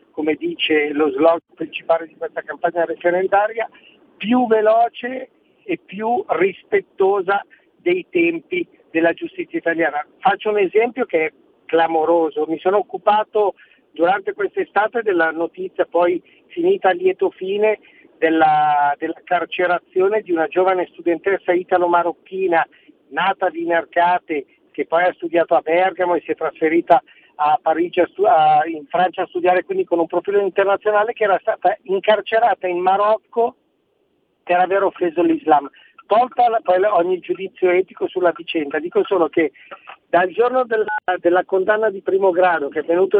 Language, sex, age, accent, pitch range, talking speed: Italian, male, 50-69, native, 170-225 Hz, 145 wpm